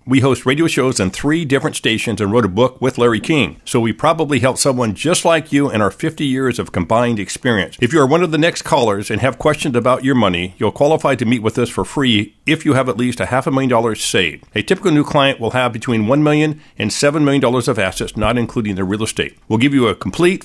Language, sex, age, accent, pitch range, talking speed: English, male, 50-69, American, 115-145 Hz, 260 wpm